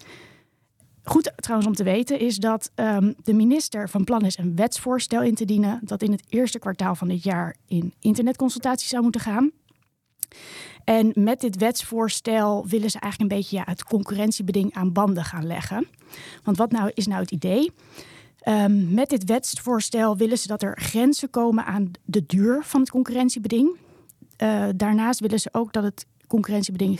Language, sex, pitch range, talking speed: Dutch, female, 195-235 Hz, 175 wpm